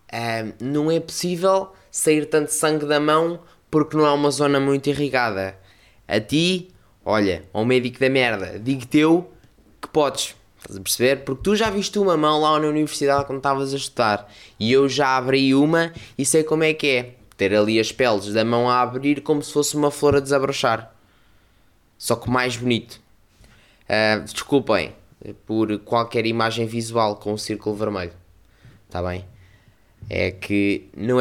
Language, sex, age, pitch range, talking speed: Portuguese, male, 20-39, 105-140 Hz, 165 wpm